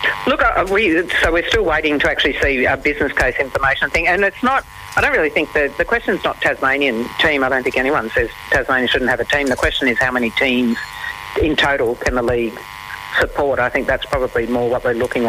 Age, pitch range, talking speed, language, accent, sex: 40-59, 120-145 Hz, 225 wpm, English, Australian, female